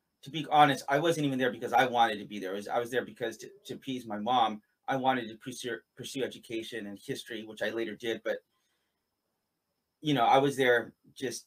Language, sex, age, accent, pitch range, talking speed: English, male, 30-49, American, 120-145 Hz, 220 wpm